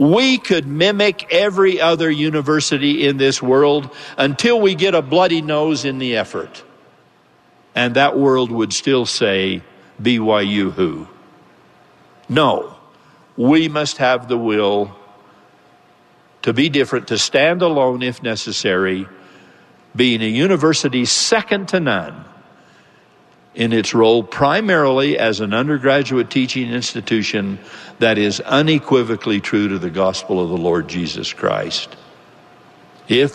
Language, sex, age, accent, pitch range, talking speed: English, male, 60-79, American, 110-145 Hz, 120 wpm